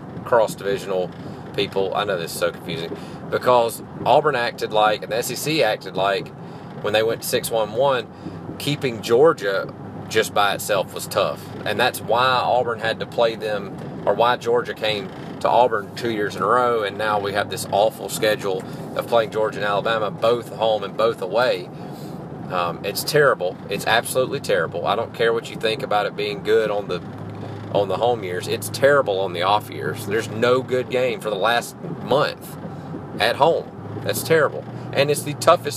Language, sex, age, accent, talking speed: English, male, 30-49, American, 185 wpm